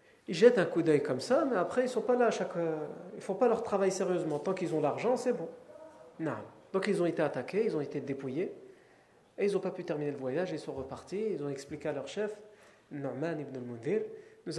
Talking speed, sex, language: 245 wpm, male, French